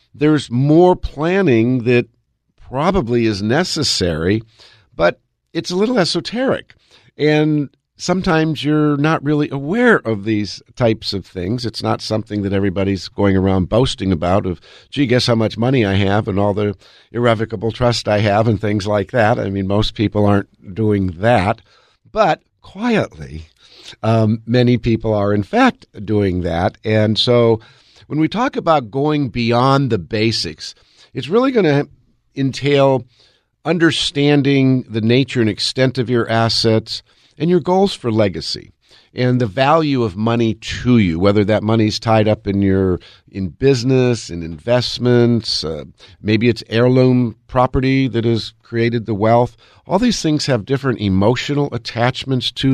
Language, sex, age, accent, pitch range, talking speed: English, male, 50-69, American, 105-135 Hz, 150 wpm